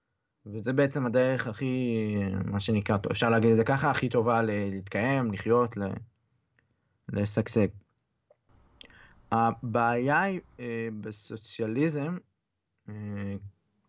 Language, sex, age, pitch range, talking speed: Hebrew, male, 20-39, 110-135 Hz, 100 wpm